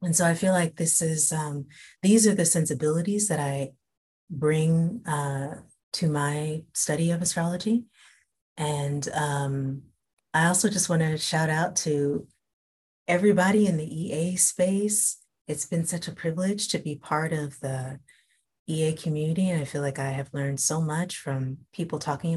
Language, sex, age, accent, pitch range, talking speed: English, female, 30-49, American, 150-185 Hz, 160 wpm